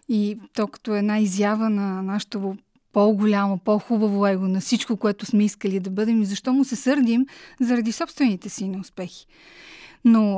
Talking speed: 150 wpm